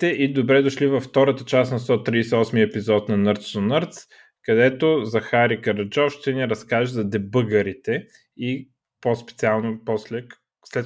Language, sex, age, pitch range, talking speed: Bulgarian, male, 20-39, 105-135 Hz, 140 wpm